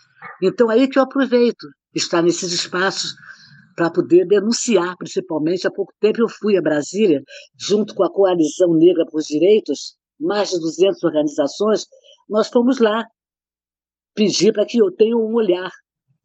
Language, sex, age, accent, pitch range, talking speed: Portuguese, female, 50-69, Brazilian, 170-230 Hz, 150 wpm